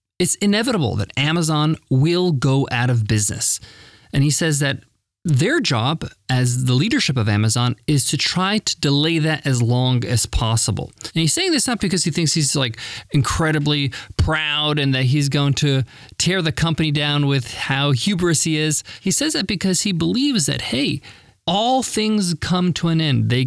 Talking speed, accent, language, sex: 180 wpm, American, English, male